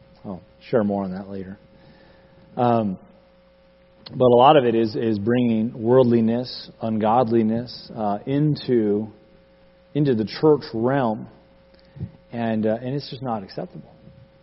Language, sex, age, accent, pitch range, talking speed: English, male, 40-59, American, 110-145 Hz, 125 wpm